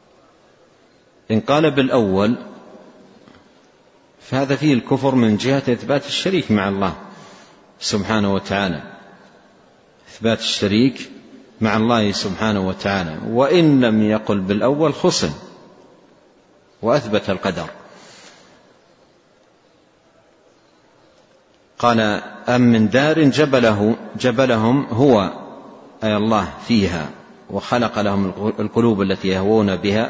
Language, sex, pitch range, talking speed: Arabic, male, 100-120 Hz, 85 wpm